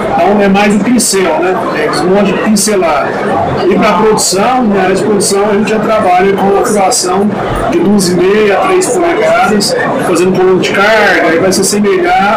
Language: Portuguese